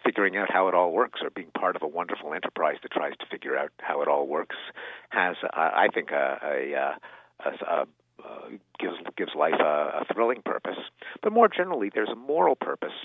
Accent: American